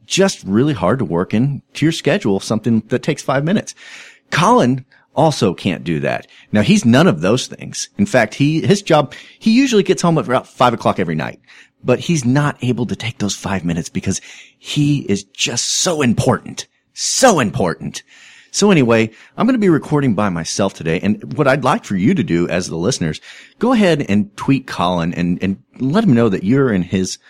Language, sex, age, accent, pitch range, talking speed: English, male, 40-59, American, 95-155 Hz, 200 wpm